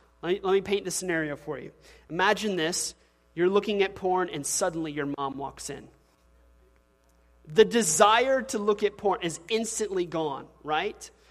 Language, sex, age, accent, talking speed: English, male, 30-49, American, 160 wpm